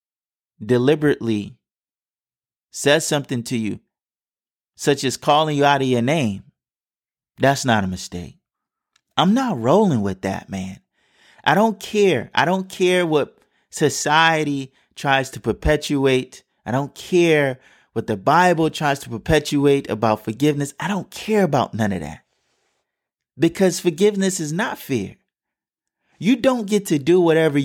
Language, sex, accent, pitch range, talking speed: English, male, American, 115-150 Hz, 135 wpm